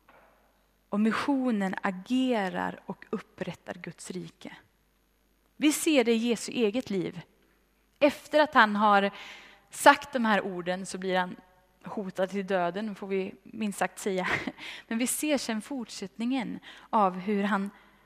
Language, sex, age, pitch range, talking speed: Swedish, female, 20-39, 195-235 Hz, 135 wpm